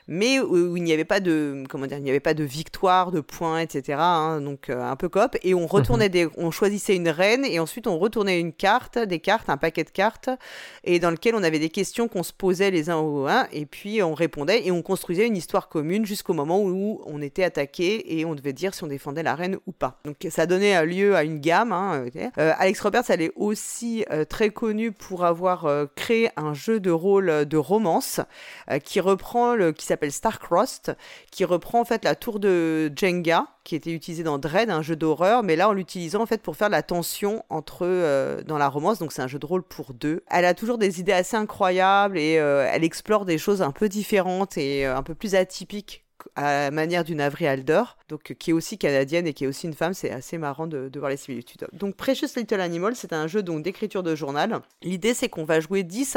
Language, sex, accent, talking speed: French, female, French, 235 wpm